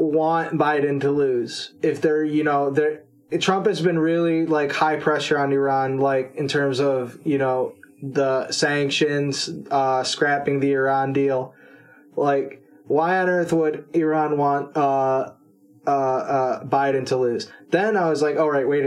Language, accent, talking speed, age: English, American, 165 wpm, 20-39